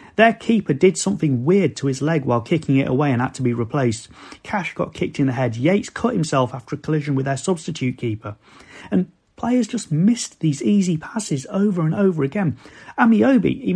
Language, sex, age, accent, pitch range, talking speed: English, male, 30-49, British, 125-185 Hz, 200 wpm